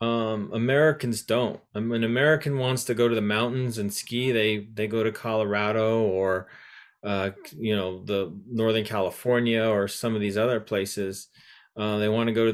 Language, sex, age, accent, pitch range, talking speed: English, male, 30-49, American, 110-145 Hz, 175 wpm